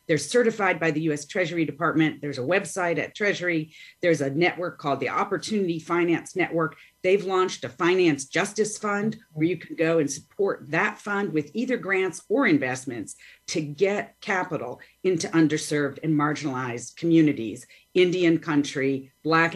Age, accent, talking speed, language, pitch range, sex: 40-59, American, 155 wpm, English, 145-185 Hz, female